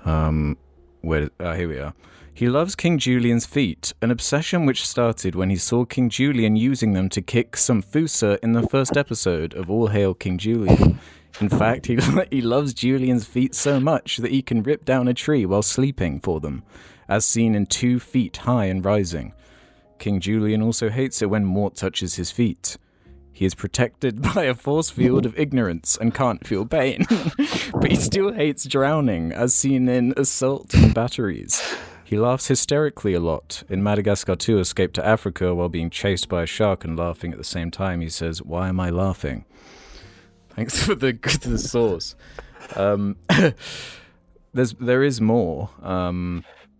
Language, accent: English, British